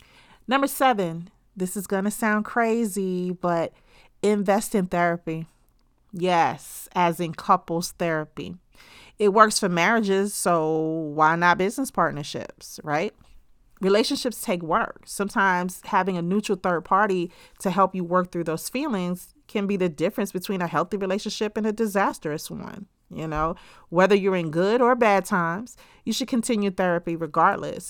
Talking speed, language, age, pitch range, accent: 150 wpm, English, 30-49, 165-215 Hz, American